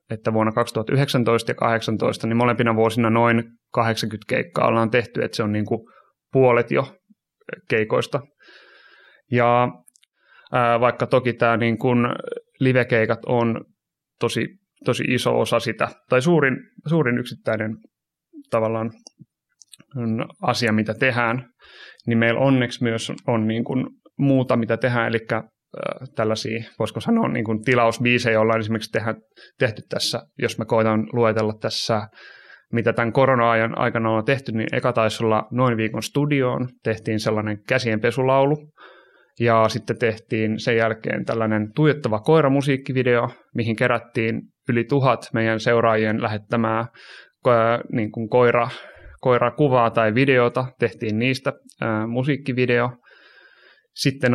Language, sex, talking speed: Finnish, male, 120 wpm